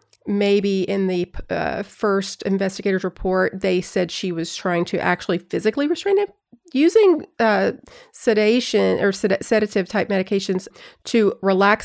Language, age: English, 40-59